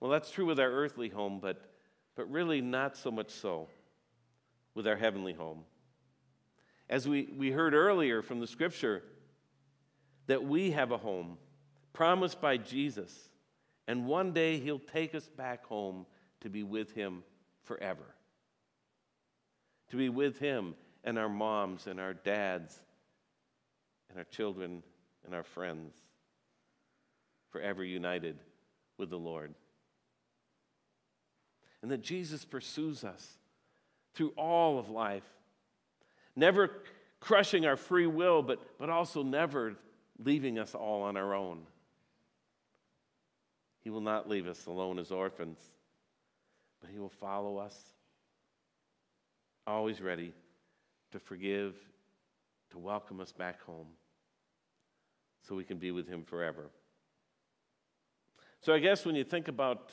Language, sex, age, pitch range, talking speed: English, male, 50-69, 95-140 Hz, 130 wpm